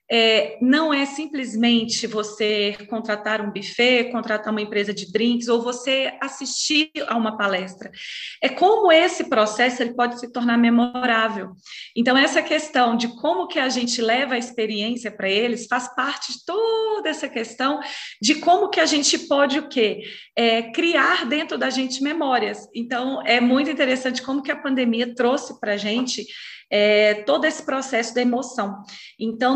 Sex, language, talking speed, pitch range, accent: female, Portuguese, 160 wpm, 220-270 Hz, Brazilian